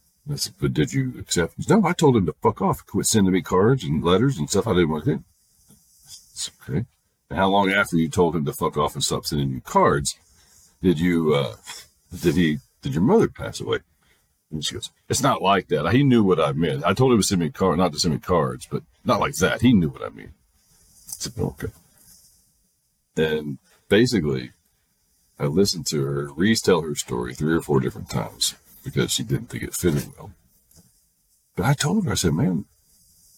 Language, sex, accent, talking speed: English, male, American, 215 wpm